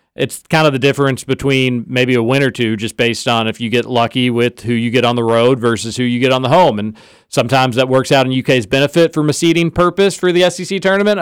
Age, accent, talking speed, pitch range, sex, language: 40-59, American, 255 wpm, 130-180 Hz, male, English